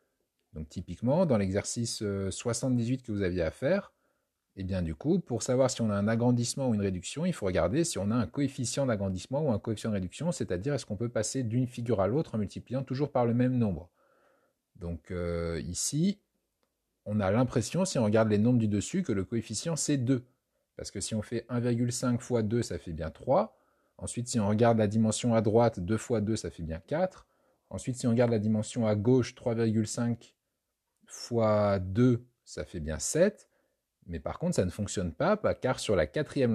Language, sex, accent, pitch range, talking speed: French, male, French, 105-130 Hz, 205 wpm